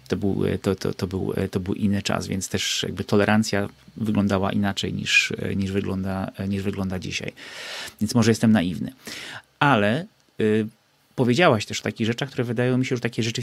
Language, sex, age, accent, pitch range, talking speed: Polish, male, 30-49, native, 100-115 Hz, 180 wpm